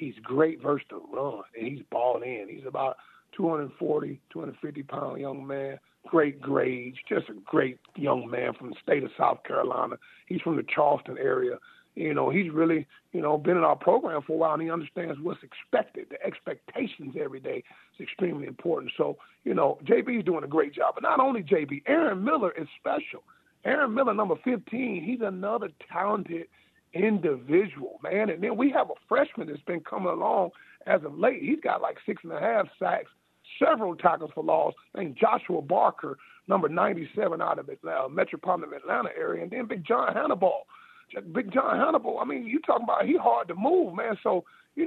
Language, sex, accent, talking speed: English, male, American, 190 wpm